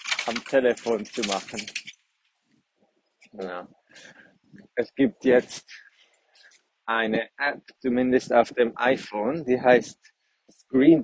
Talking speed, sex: 85 wpm, male